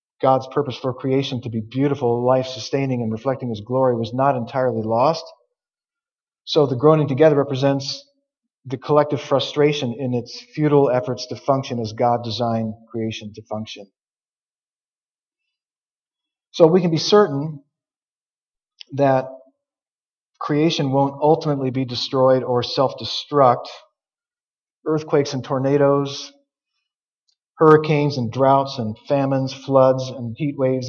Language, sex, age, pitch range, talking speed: English, male, 40-59, 125-160 Hz, 120 wpm